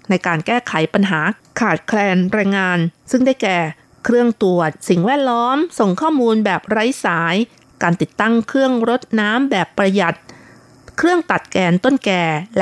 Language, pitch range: Thai, 175-235 Hz